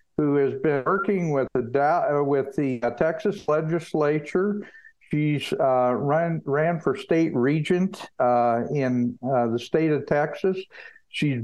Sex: male